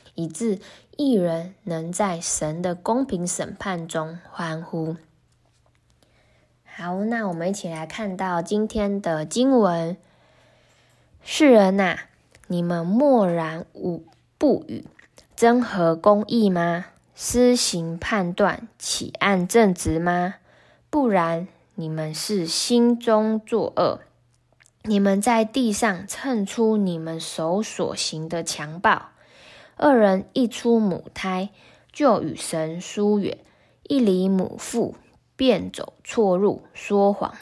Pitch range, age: 170-225 Hz, 10-29